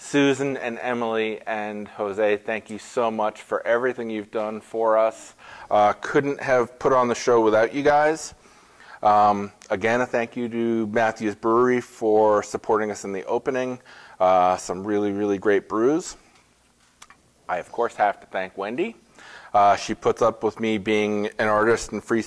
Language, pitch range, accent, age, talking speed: English, 105-115 Hz, American, 30-49, 170 wpm